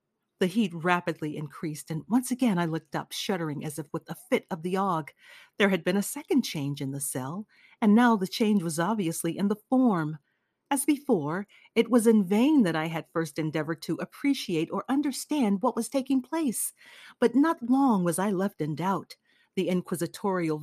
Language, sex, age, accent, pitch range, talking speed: English, female, 40-59, American, 165-245 Hz, 190 wpm